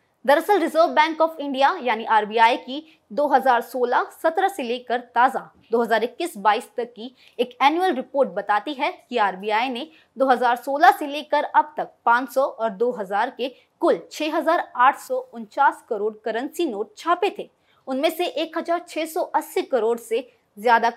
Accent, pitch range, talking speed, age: native, 225-310 Hz, 135 wpm, 20-39